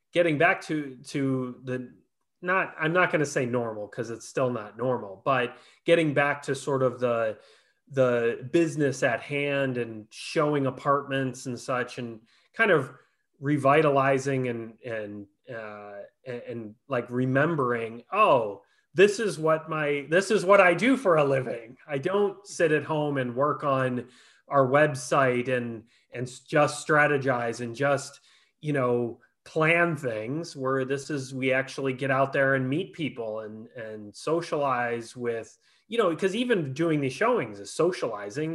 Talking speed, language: 155 wpm, English